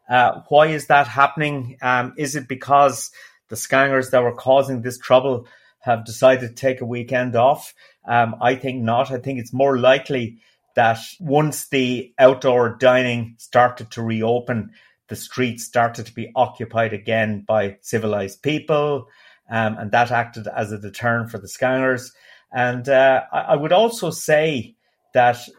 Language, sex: English, male